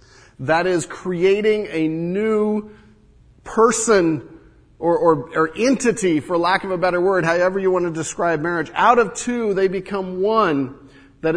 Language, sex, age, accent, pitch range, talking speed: English, male, 40-59, American, 125-195 Hz, 155 wpm